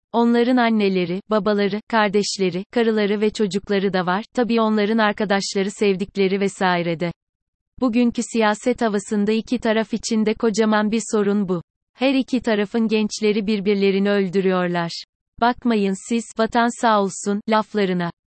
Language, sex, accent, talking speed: Turkish, female, native, 125 wpm